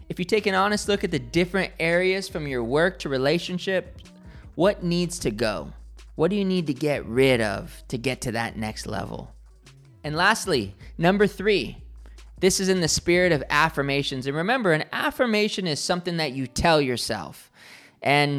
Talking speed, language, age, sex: 180 wpm, English, 20-39, male